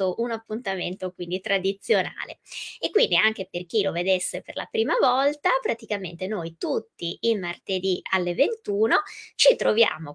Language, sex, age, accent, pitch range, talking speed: Italian, female, 20-39, native, 175-220 Hz, 140 wpm